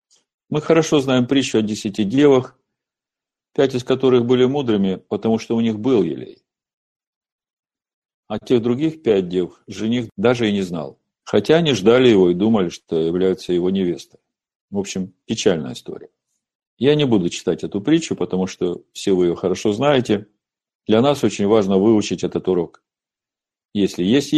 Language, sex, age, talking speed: Russian, male, 50-69, 160 wpm